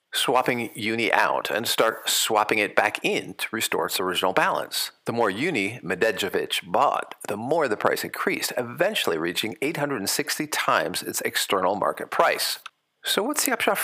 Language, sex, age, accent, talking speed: English, male, 50-69, American, 155 wpm